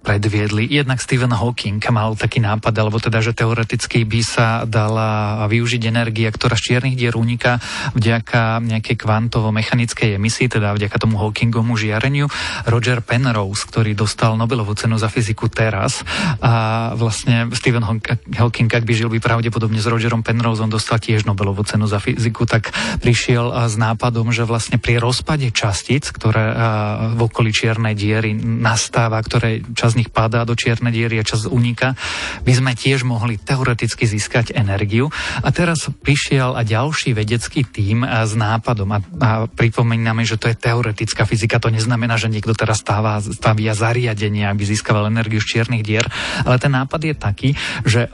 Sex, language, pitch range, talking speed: male, Slovak, 110-120 Hz, 160 wpm